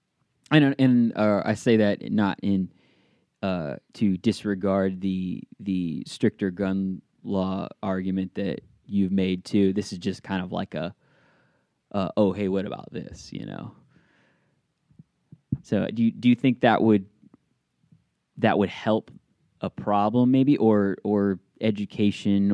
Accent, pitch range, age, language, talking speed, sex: American, 95-105 Hz, 20-39, English, 140 wpm, male